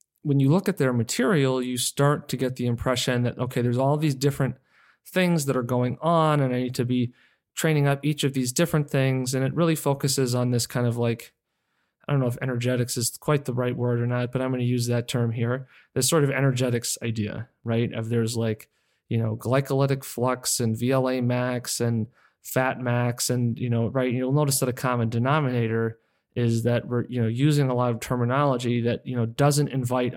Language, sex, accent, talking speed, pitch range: English, male, American, 215 wpm, 115-130 Hz